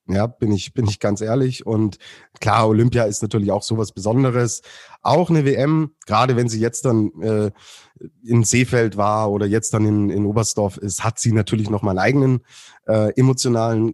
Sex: male